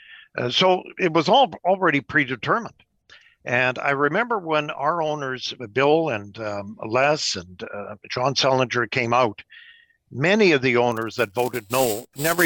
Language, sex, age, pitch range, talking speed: English, male, 60-79, 115-145 Hz, 150 wpm